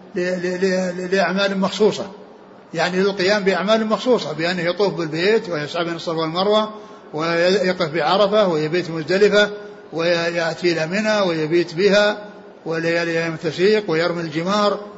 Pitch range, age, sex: 175-215 Hz, 60-79, male